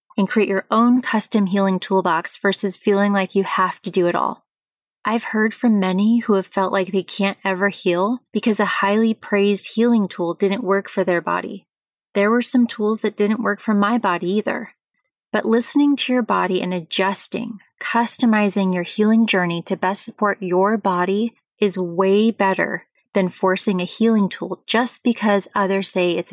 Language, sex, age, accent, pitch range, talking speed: English, female, 20-39, American, 185-220 Hz, 180 wpm